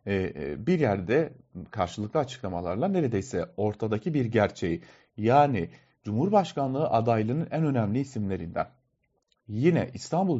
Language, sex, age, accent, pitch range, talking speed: German, male, 40-59, Turkish, 110-155 Hz, 90 wpm